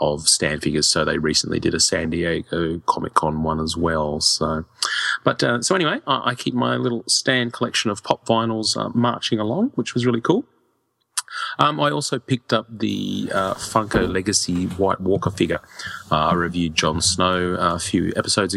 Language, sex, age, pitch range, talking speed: English, male, 30-49, 85-110 Hz, 180 wpm